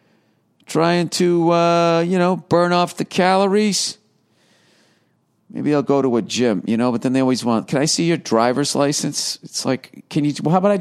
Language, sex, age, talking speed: English, male, 50-69, 200 wpm